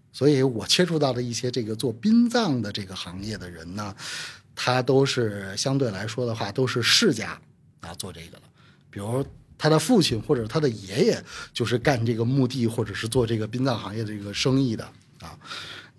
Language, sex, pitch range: Chinese, male, 105-140 Hz